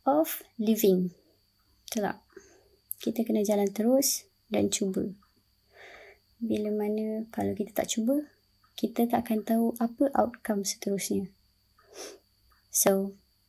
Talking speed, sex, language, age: 100 wpm, male, Malay, 20-39